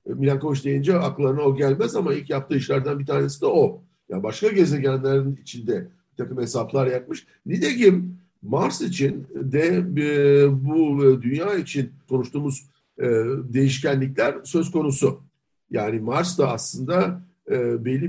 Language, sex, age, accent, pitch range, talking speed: Turkish, male, 60-79, native, 135-180 Hz, 125 wpm